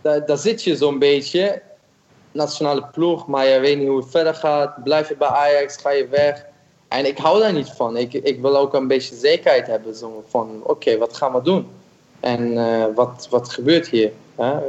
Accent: Dutch